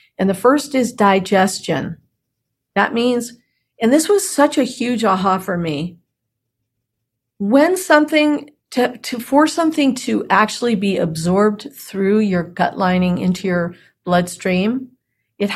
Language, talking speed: English, 130 wpm